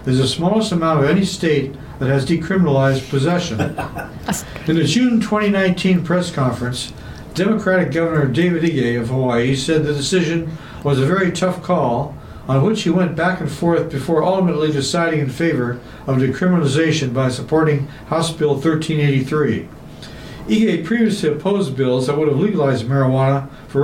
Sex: male